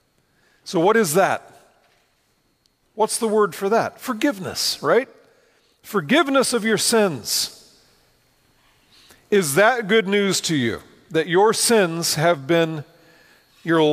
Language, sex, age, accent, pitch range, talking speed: English, male, 40-59, American, 135-210 Hz, 115 wpm